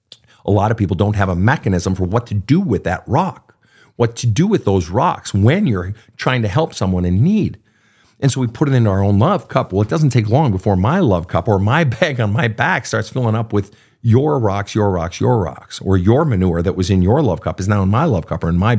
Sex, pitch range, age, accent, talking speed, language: male, 100-125 Hz, 50-69, American, 260 wpm, English